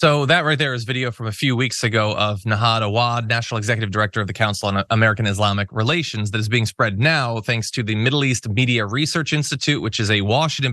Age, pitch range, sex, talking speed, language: 20-39, 110-140 Hz, male, 230 wpm, English